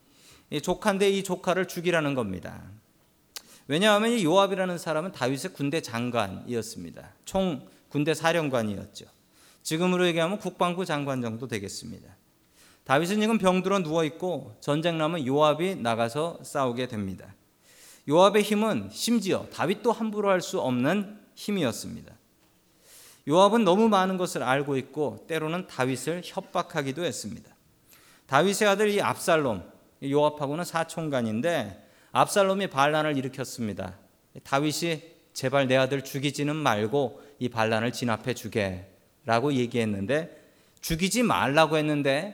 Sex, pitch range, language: male, 125-185 Hz, Korean